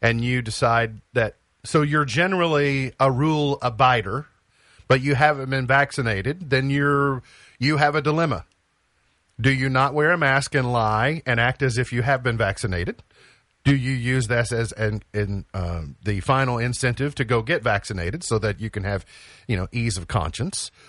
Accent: American